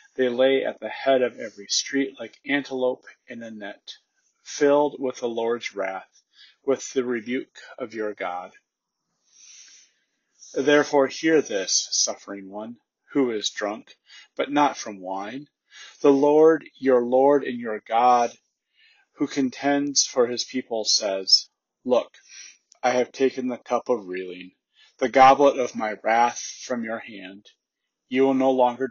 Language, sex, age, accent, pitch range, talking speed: English, male, 30-49, American, 115-135 Hz, 145 wpm